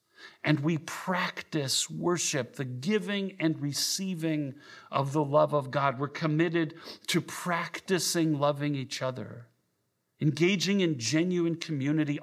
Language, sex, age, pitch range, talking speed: English, male, 40-59, 140-180 Hz, 120 wpm